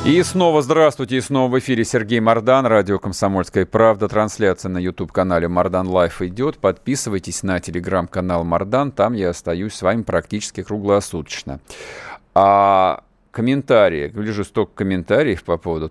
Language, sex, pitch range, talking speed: Russian, male, 85-110 Hz, 140 wpm